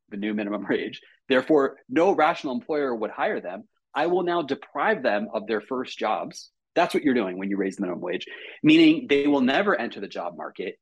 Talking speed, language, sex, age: 210 wpm, English, male, 30-49